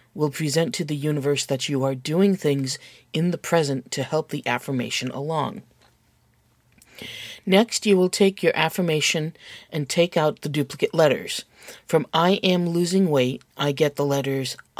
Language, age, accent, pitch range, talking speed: English, 40-59, American, 140-170 Hz, 160 wpm